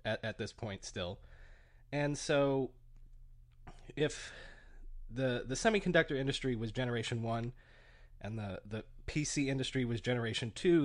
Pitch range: 110-135 Hz